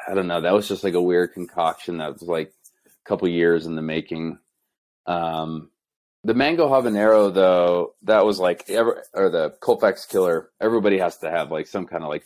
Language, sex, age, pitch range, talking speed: English, male, 30-49, 85-100 Hz, 200 wpm